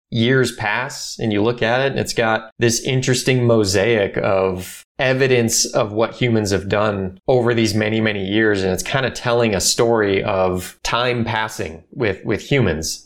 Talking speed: 175 wpm